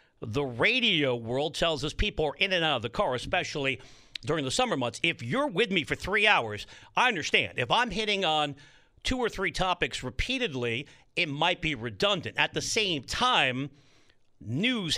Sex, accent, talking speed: male, American, 180 wpm